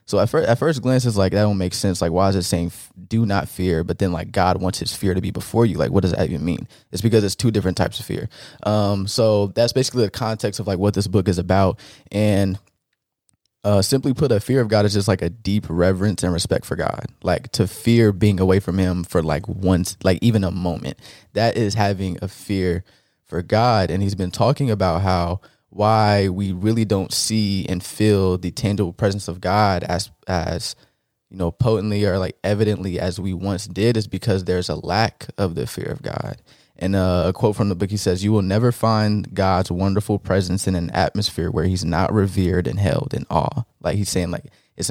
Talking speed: 225 wpm